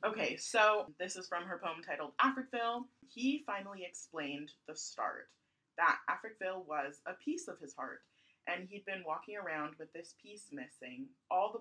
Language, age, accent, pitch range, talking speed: English, 20-39, American, 165-225 Hz, 170 wpm